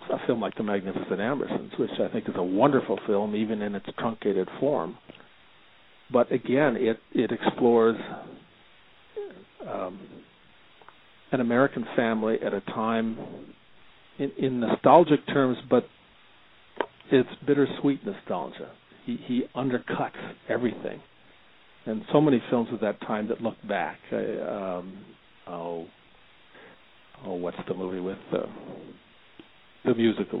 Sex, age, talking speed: male, 50-69, 125 wpm